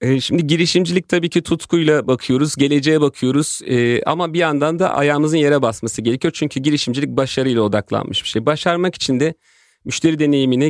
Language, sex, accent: Turkish, male, native